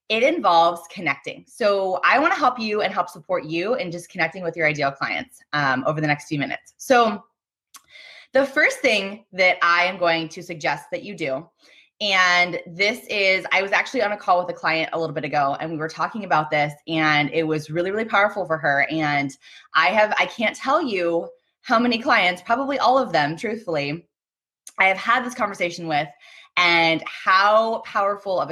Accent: American